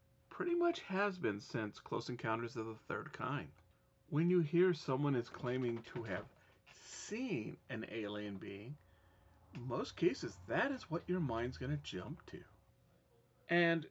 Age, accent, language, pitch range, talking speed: 40-59, American, English, 115-180 Hz, 150 wpm